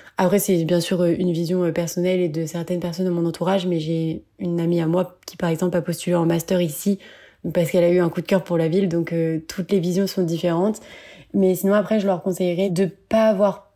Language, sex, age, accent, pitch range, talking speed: French, female, 20-39, French, 175-200 Hz, 240 wpm